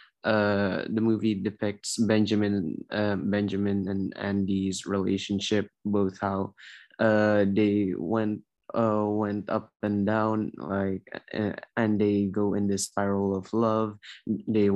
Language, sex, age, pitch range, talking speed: Indonesian, male, 20-39, 100-120 Hz, 125 wpm